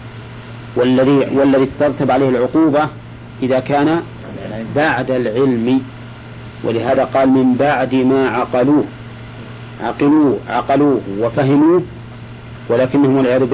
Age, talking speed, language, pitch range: 40-59, 90 wpm, English, 115-140 Hz